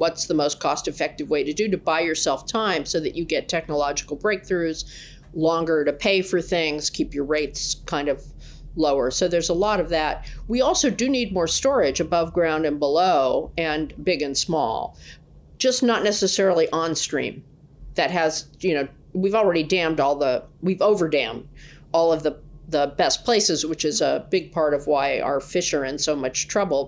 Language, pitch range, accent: English, 145-175 Hz, American